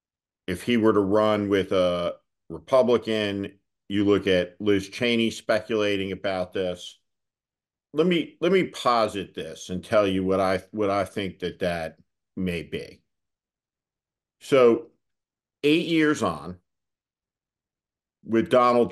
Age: 50-69